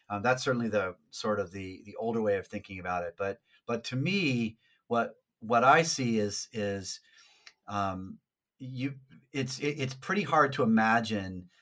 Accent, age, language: American, 30-49, English